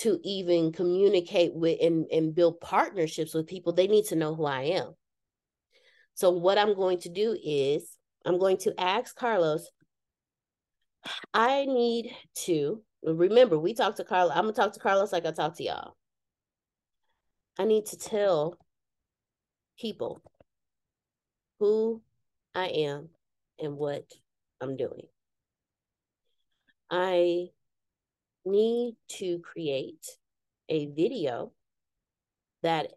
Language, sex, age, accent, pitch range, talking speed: English, female, 30-49, American, 160-230 Hz, 120 wpm